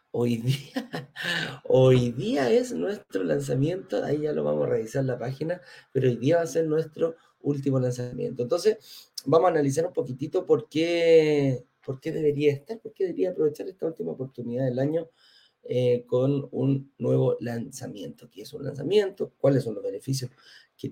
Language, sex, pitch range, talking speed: Spanish, male, 125-160 Hz, 170 wpm